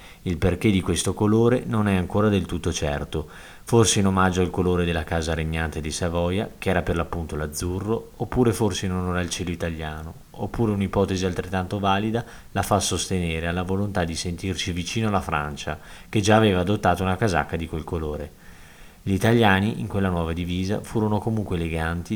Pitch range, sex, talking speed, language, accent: 85-100 Hz, male, 175 wpm, Italian, native